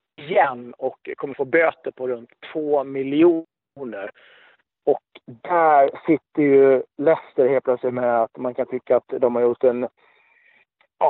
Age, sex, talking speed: 40-59, male, 145 wpm